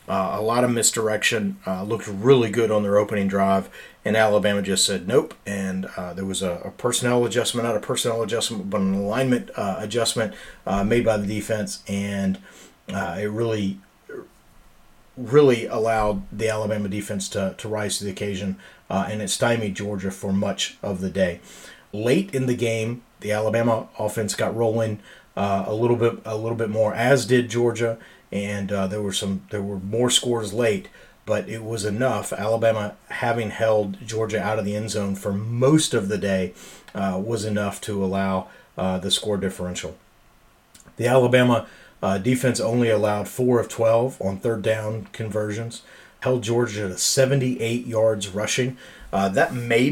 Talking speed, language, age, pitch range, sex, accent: 175 wpm, English, 40-59, 100-120 Hz, male, American